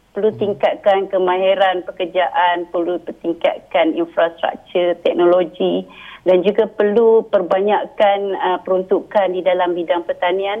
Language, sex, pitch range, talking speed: Malay, female, 170-195 Hz, 95 wpm